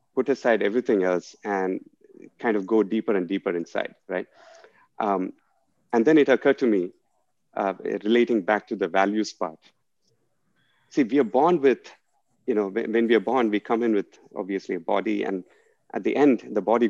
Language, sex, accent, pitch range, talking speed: English, male, Indian, 110-145 Hz, 180 wpm